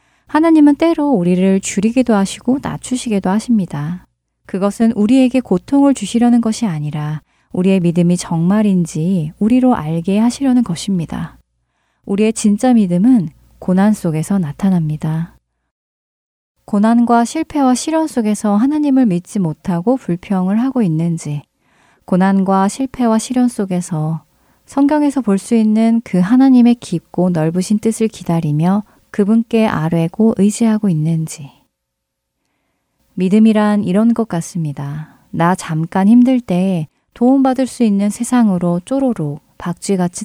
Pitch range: 170-230 Hz